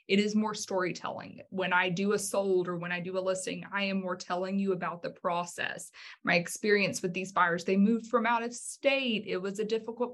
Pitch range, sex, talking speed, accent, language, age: 185-220 Hz, female, 225 wpm, American, English, 20-39